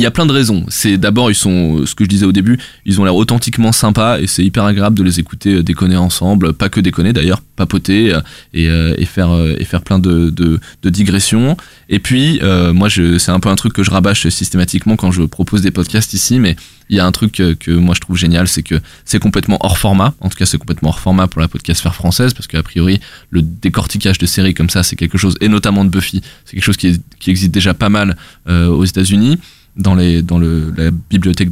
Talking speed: 250 wpm